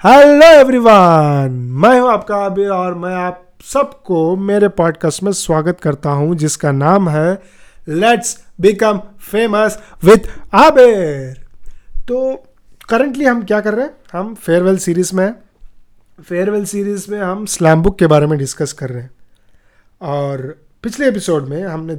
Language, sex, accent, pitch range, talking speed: Hindi, male, native, 150-195 Hz, 145 wpm